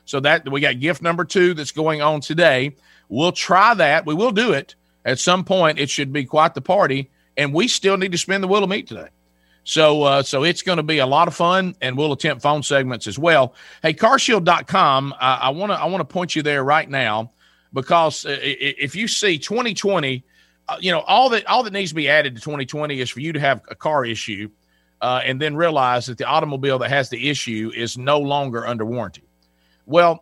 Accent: American